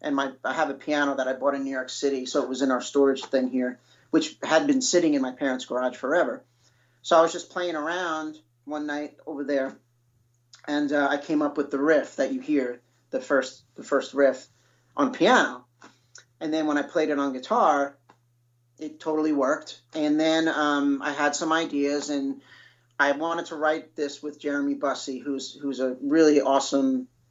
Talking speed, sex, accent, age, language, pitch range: 200 wpm, male, American, 40-59, English, 130-150 Hz